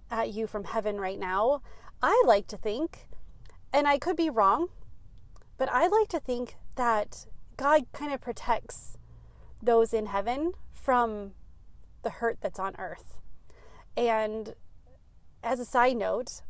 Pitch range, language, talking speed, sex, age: 200-245 Hz, English, 140 wpm, female, 30-49